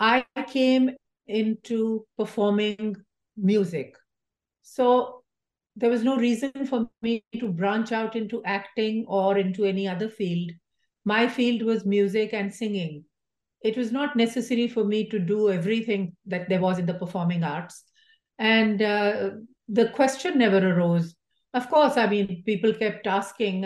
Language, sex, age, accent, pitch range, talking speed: English, female, 50-69, Indian, 190-230 Hz, 145 wpm